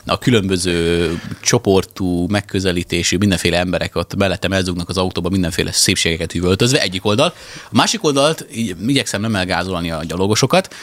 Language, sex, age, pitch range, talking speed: Hungarian, male, 30-49, 90-115 Hz, 135 wpm